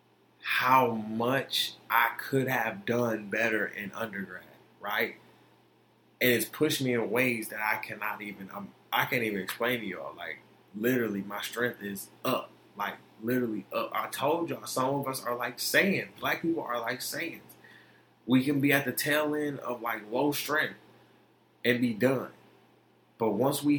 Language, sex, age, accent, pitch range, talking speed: English, male, 20-39, American, 125-150 Hz, 170 wpm